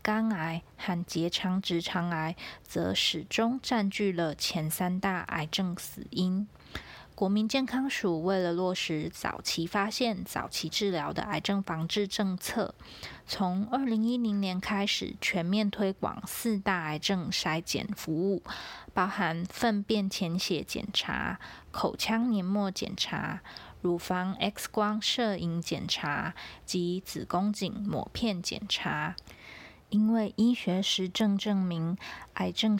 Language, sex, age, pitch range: Chinese, female, 20-39, 175-210 Hz